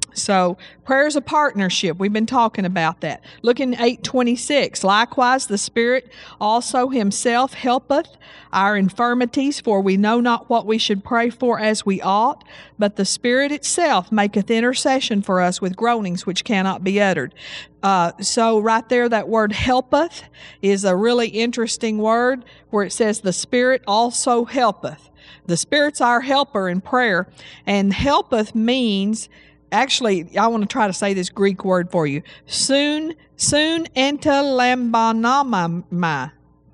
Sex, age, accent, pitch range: female, 50-69, American, 195-250 Hz